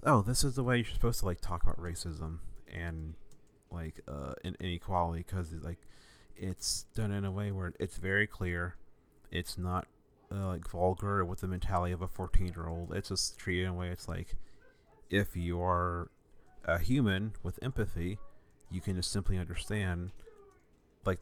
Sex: male